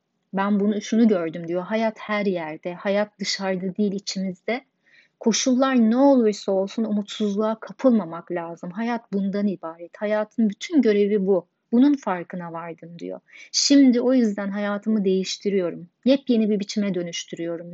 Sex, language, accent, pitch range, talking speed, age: female, Turkish, native, 185-220 Hz, 130 wpm, 30-49